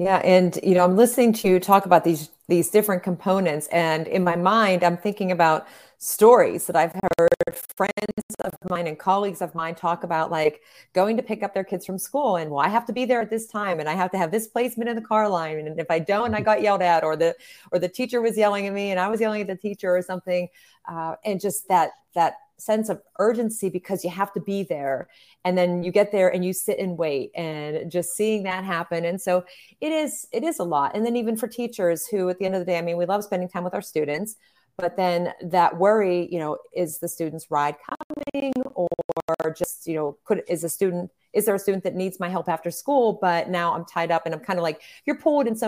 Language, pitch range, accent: English, 170-210 Hz, American